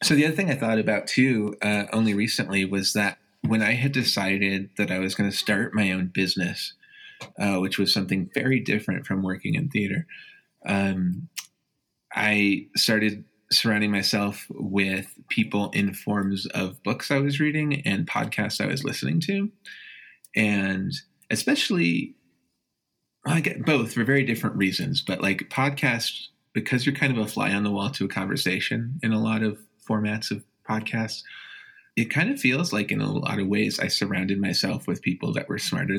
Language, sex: English, male